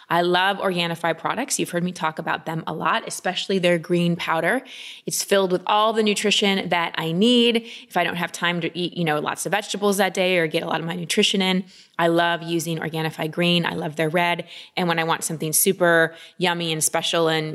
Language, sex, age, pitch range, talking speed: English, female, 20-39, 165-225 Hz, 225 wpm